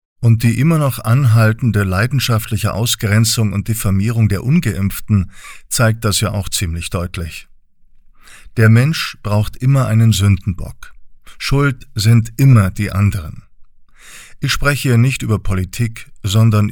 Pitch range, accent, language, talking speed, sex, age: 100-120 Hz, German, German, 125 wpm, male, 50-69